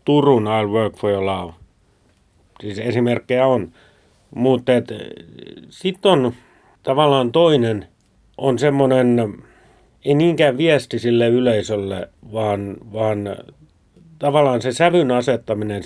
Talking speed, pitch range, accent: 100 wpm, 105-130 Hz, native